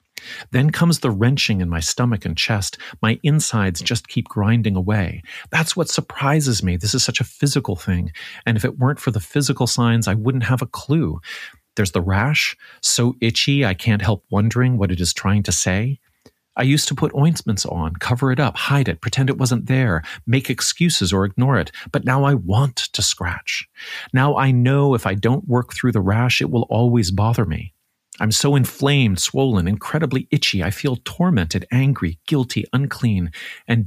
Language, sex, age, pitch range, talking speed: English, male, 40-59, 100-130 Hz, 190 wpm